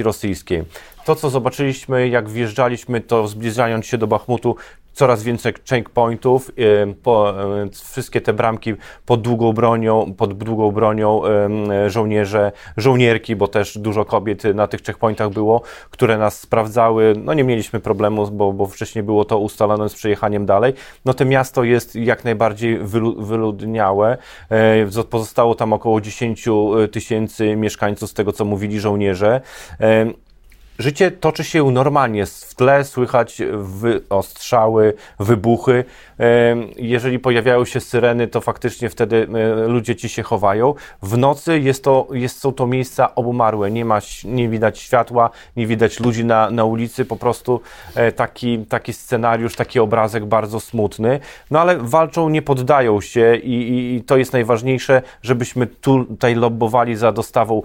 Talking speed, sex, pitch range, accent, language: 140 wpm, male, 110-125 Hz, native, Polish